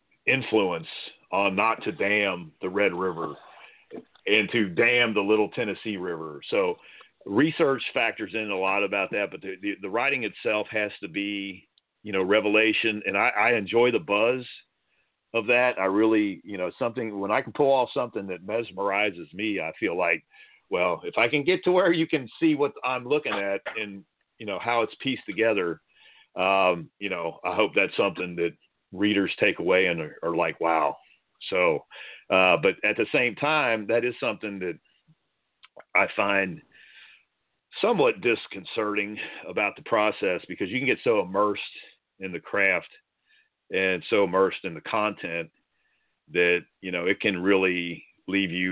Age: 40-59